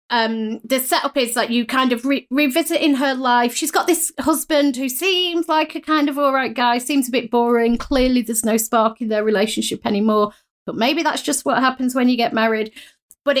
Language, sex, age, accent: English, female, 30-49, British